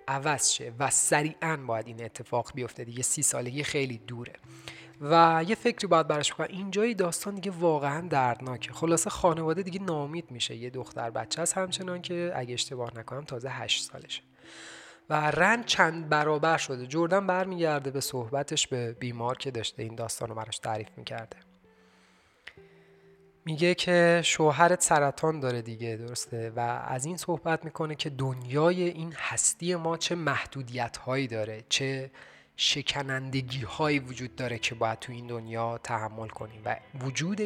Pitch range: 120-170 Hz